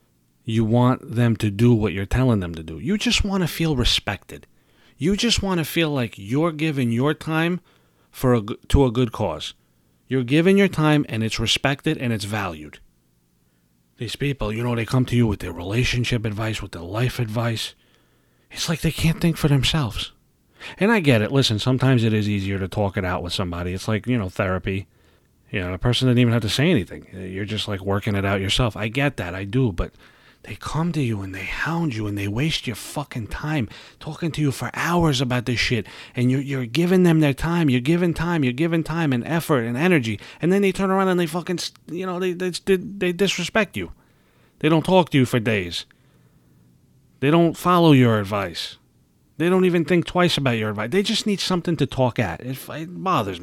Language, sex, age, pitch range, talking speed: English, male, 40-59, 100-160 Hz, 215 wpm